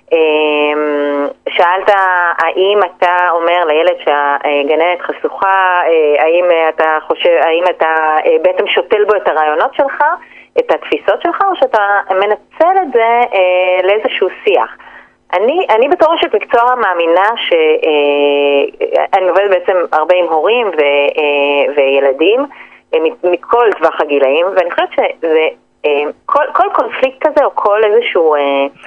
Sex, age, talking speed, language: female, 30-49, 115 wpm, Hebrew